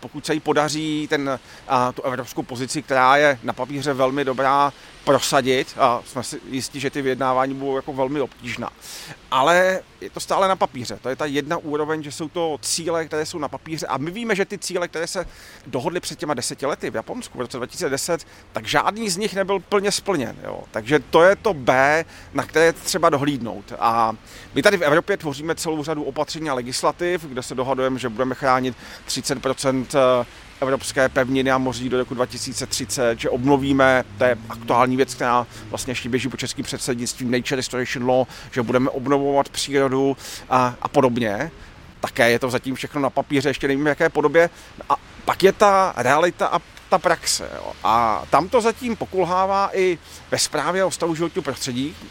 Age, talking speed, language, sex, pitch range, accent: 40-59, 185 wpm, Czech, male, 130-170 Hz, native